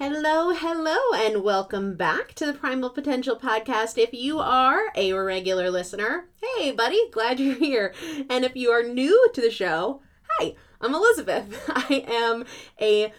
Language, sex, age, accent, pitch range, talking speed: English, female, 30-49, American, 195-305 Hz, 160 wpm